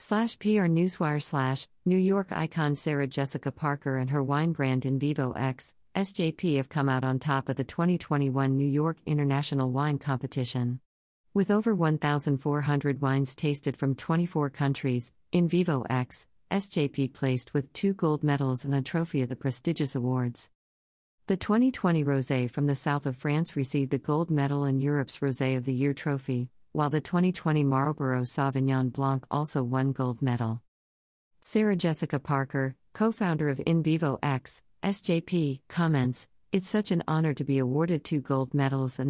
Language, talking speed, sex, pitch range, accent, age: English, 160 wpm, female, 130-160 Hz, American, 50-69